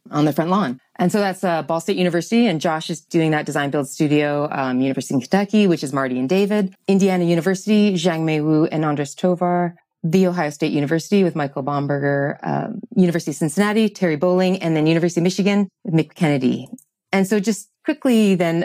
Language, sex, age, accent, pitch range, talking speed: English, female, 30-49, American, 150-190 Hz, 205 wpm